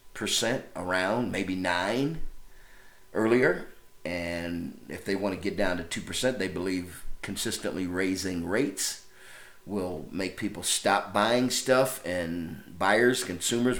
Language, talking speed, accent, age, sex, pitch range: English, 125 wpm, American, 50-69, male, 95-135 Hz